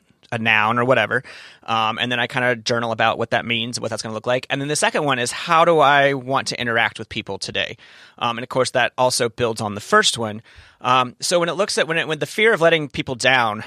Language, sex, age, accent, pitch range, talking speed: English, male, 30-49, American, 120-150 Hz, 270 wpm